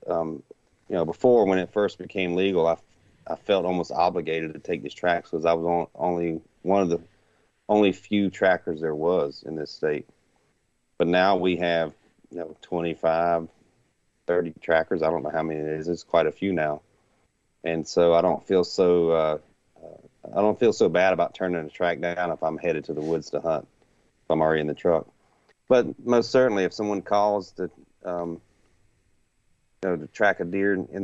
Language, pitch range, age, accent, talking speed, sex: English, 85-100 Hz, 30-49, American, 195 wpm, male